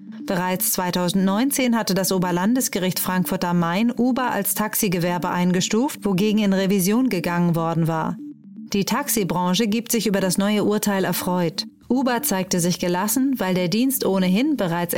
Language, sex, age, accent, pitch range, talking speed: German, female, 30-49, German, 180-230 Hz, 145 wpm